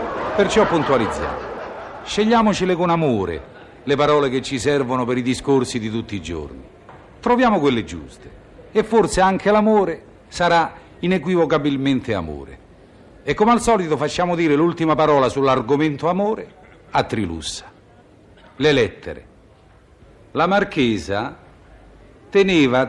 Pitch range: 115-175 Hz